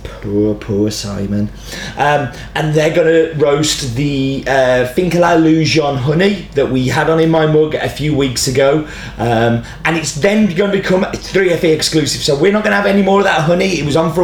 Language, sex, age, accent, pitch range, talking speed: English, male, 30-49, British, 140-175 Hz, 195 wpm